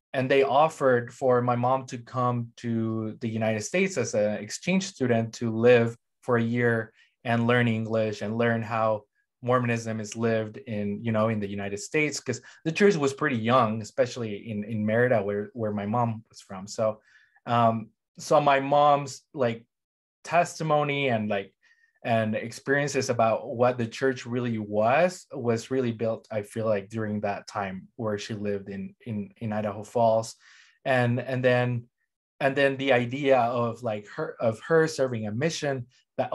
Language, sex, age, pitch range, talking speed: English, male, 20-39, 105-130 Hz, 170 wpm